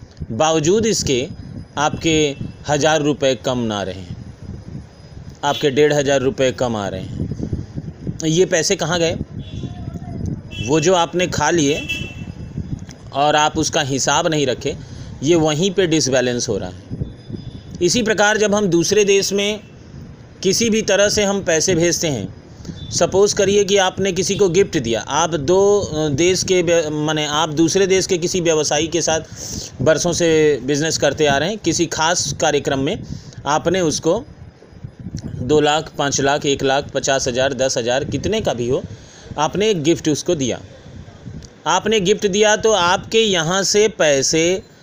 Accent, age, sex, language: native, 40-59, male, Hindi